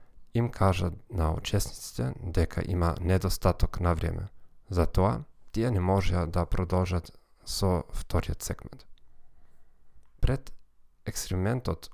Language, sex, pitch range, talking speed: Dutch, male, 85-105 Hz, 105 wpm